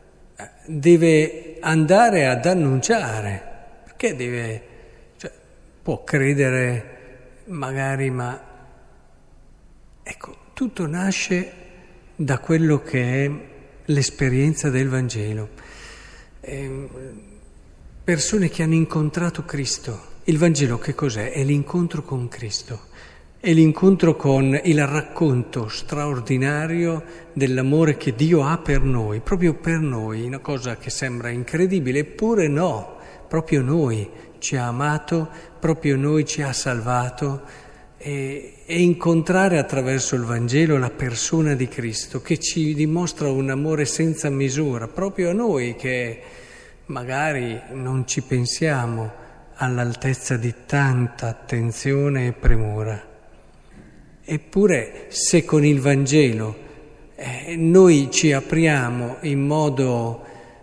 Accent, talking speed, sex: native, 110 wpm, male